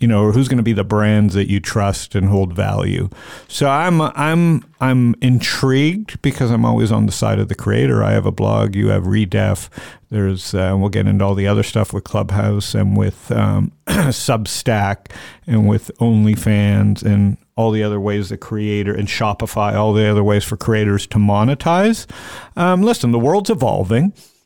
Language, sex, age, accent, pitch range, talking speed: English, male, 50-69, American, 100-120 Hz, 185 wpm